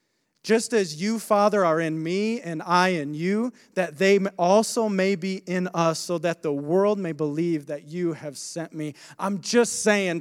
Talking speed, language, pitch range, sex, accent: 190 wpm, English, 150-195 Hz, male, American